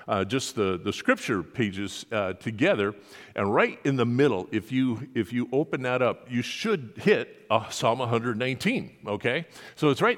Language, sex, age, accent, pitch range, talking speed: English, male, 50-69, American, 125-165 Hz, 175 wpm